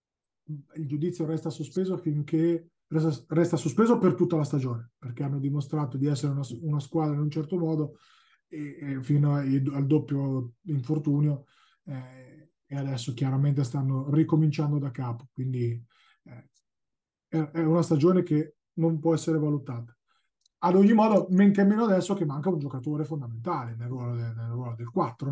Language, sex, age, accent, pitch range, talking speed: Italian, male, 20-39, native, 140-165 Hz, 165 wpm